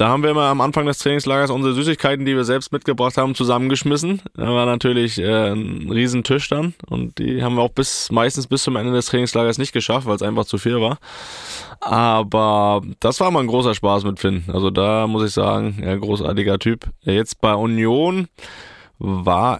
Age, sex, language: 20-39, male, German